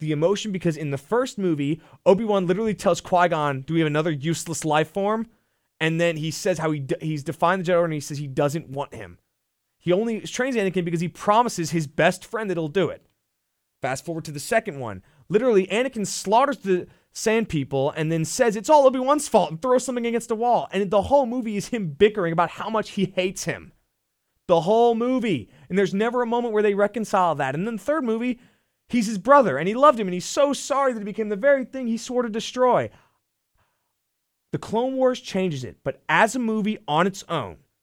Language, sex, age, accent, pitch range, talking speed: English, male, 30-49, American, 155-225 Hz, 220 wpm